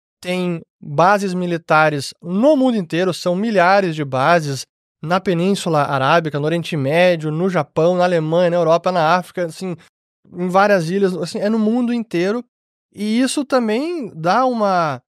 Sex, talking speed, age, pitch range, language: male, 150 wpm, 20-39, 160-200 Hz, Portuguese